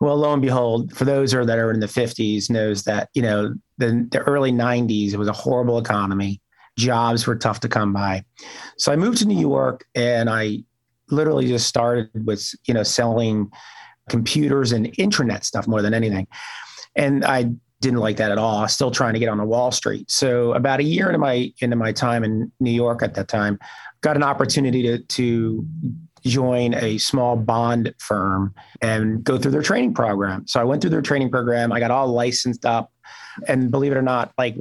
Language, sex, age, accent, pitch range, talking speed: English, male, 40-59, American, 110-135 Hz, 205 wpm